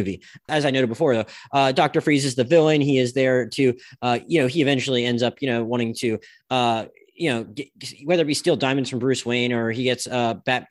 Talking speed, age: 230 wpm, 20-39